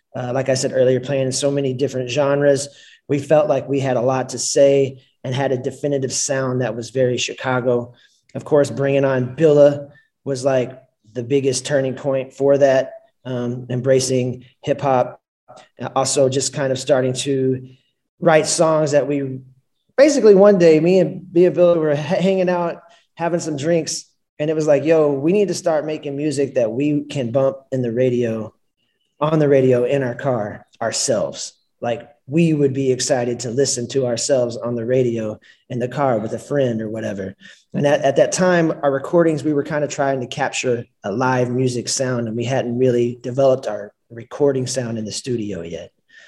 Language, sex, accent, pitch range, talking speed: English, male, American, 125-145 Hz, 185 wpm